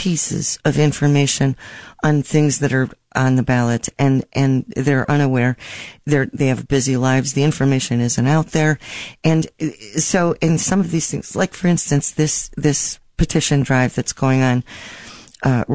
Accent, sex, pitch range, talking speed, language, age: American, female, 130-155 Hz, 160 wpm, English, 40-59